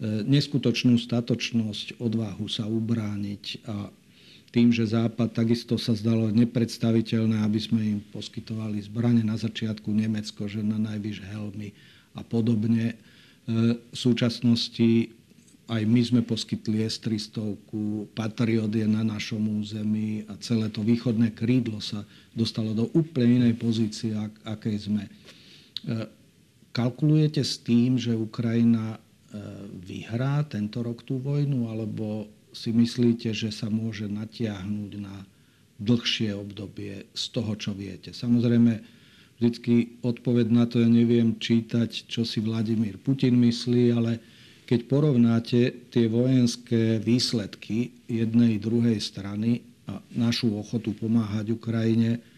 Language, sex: Slovak, male